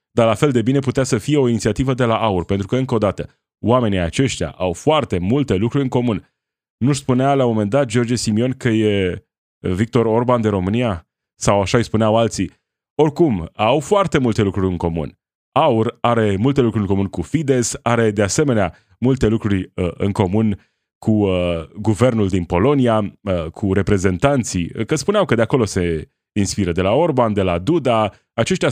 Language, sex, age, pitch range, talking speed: Romanian, male, 20-39, 100-130 Hz, 190 wpm